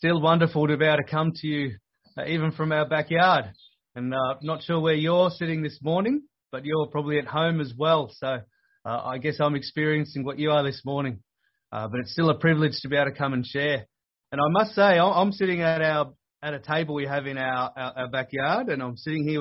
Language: English